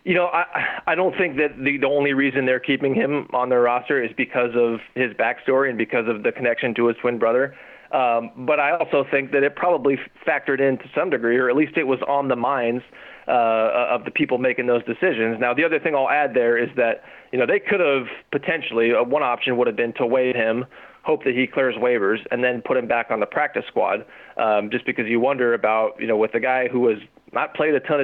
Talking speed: 245 wpm